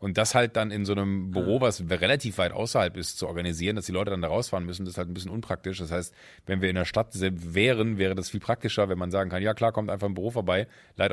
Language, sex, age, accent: German, male, 30-49, German